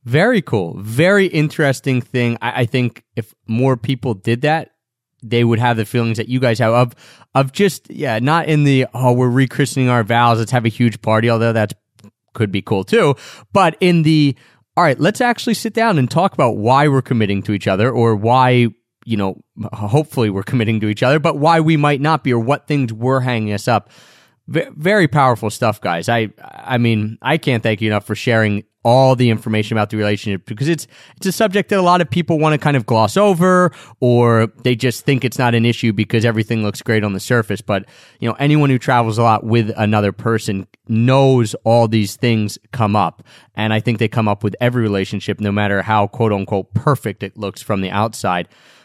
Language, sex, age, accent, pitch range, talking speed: English, male, 30-49, American, 115-145 Hz, 215 wpm